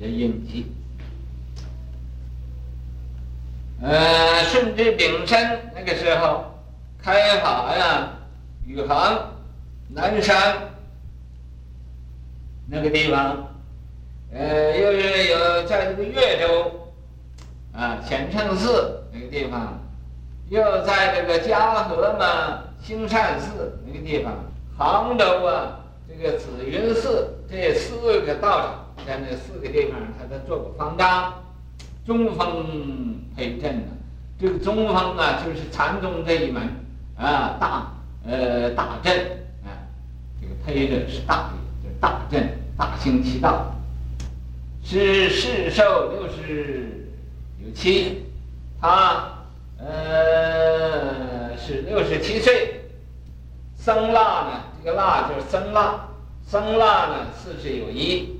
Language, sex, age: Chinese, male, 60-79